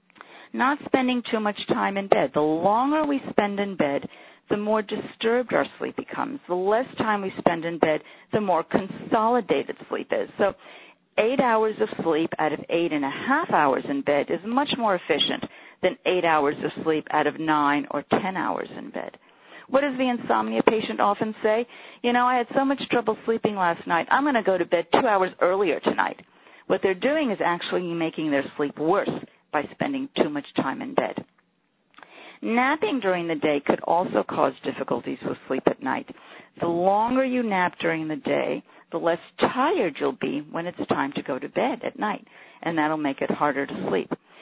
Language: English